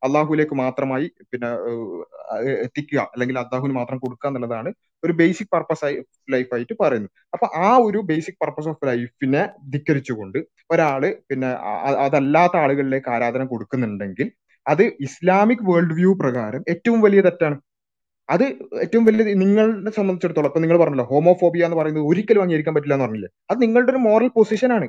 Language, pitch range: Malayalam, 130-175 Hz